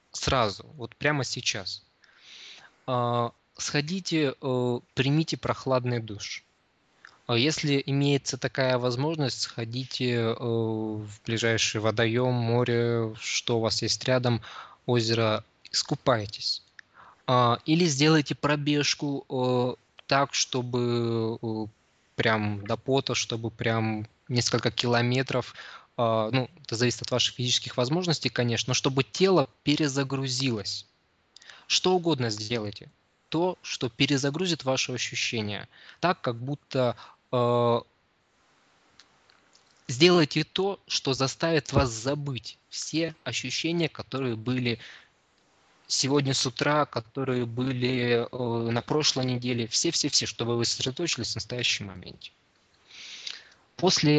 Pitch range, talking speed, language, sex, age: 115-140 Hz, 100 wpm, Russian, male, 20-39